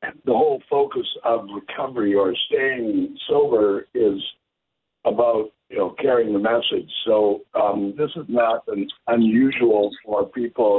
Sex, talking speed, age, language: male, 135 wpm, 60-79, English